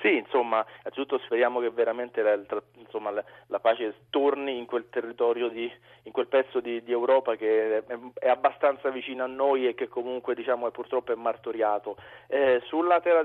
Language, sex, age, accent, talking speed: Italian, male, 40-59, native, 180 wpm